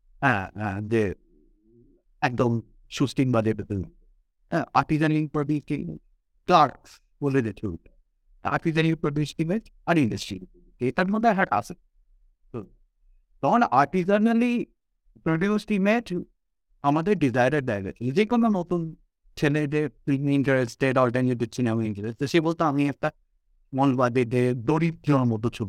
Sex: male